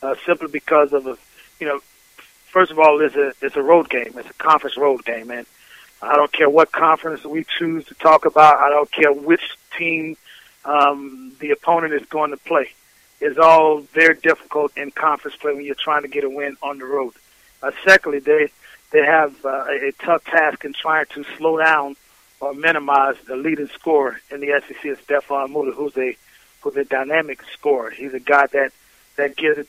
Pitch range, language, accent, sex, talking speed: 145-165 Hz, English, American, male, 200 wpm